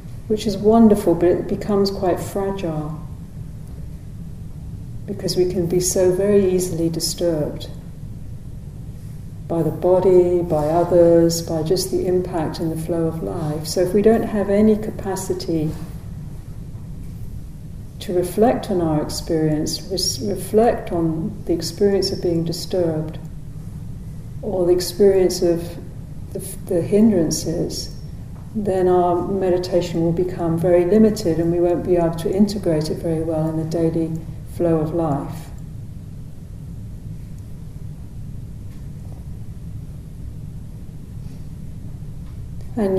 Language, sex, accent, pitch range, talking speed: English, female, British, 160-190 Hz, 110 wpm